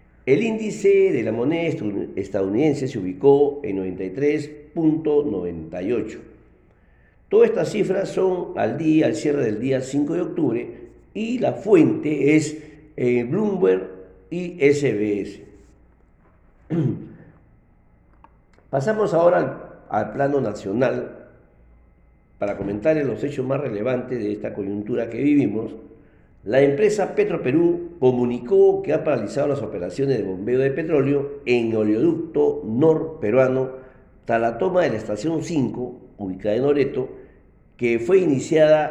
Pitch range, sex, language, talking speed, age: 105-155 Hz, male, Spanish, 115 wpm, 50-69